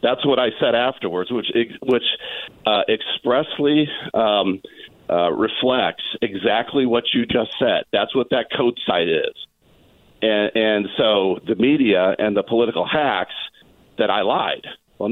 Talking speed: 145 wpm